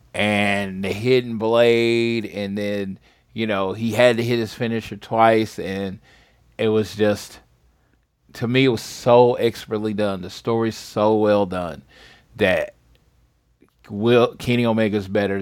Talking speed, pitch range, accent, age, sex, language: 140 wpm, 100-120 Hz, American, 30-49, male, English